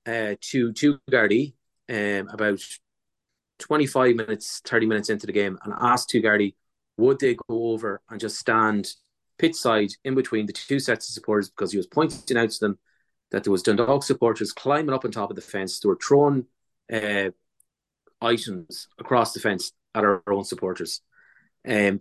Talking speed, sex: 175 wpm, male